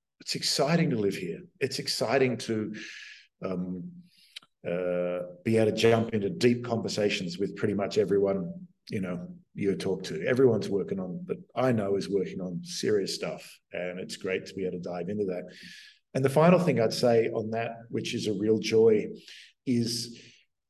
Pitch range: 105-140 Hz